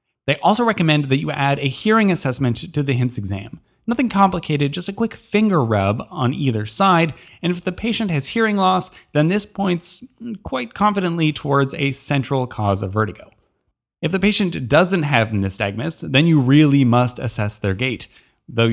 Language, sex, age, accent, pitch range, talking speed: English, male, 20-39, American, 125-180 Hz, 175 wpm